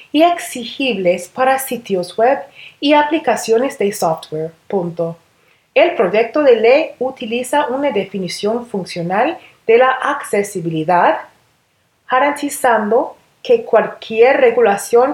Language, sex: Spanish, female